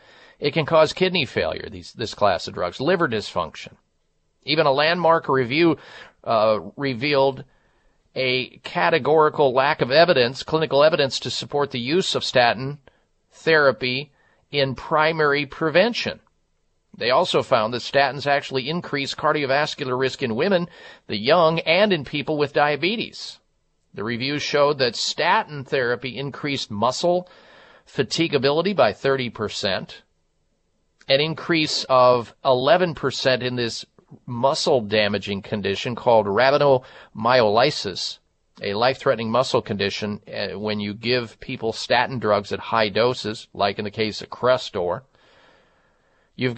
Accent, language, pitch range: American, English, 120-155 Hz